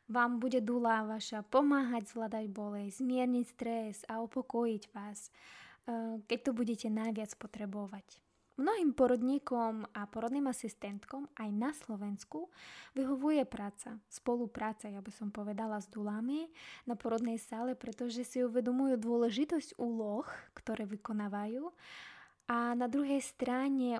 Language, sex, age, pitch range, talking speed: Slovak, female, 20-39, 220-260 Hz, 120 wpm